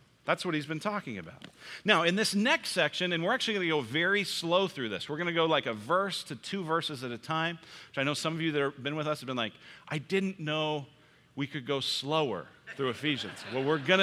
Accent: American